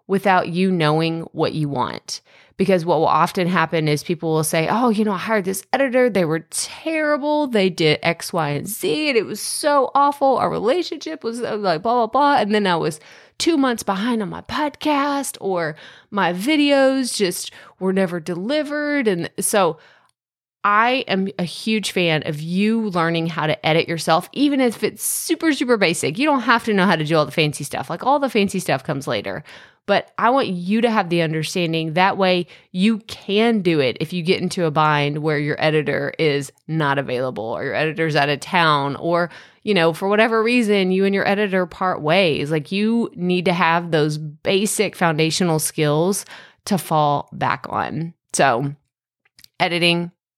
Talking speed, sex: 190 wpm, female